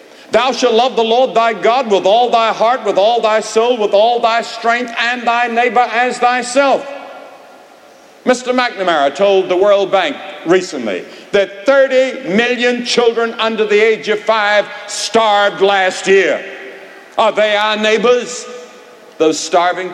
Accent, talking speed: American, 145 wpm